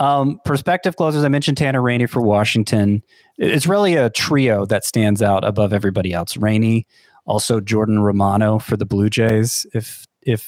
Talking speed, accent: 165 wpm, American